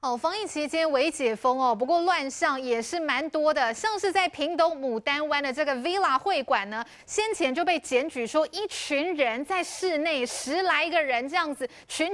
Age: 20-39